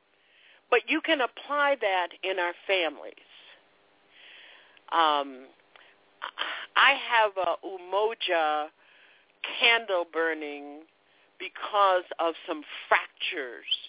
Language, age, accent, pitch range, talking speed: English, 50-69, American, 155-230 Hz, 80 wpm